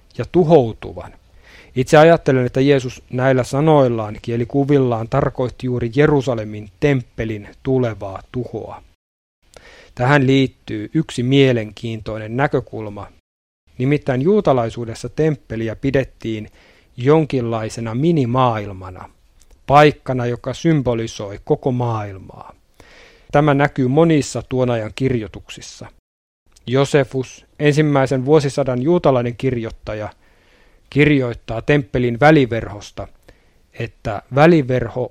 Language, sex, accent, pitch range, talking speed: Finnish, male, native, 110-140 Hz, 75 wpm